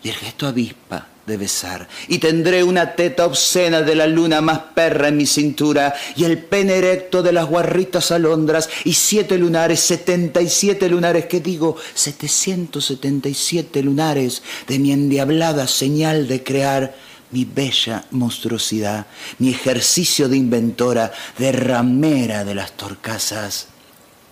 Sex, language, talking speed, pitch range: male, Spanish, 145 wpm, 130-170 Hz